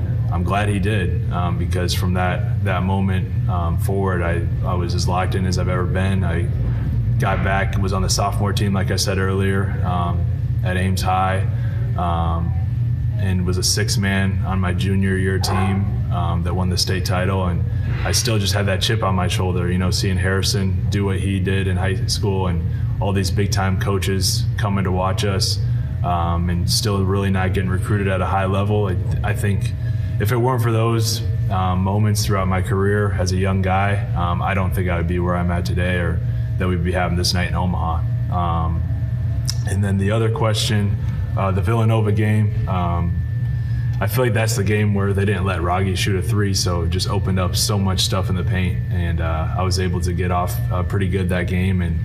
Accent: American